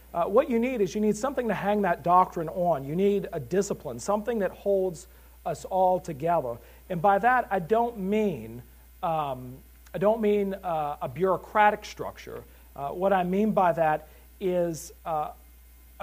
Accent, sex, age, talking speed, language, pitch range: American, male, 40-59, 170 wpm, English, 150-195 Hz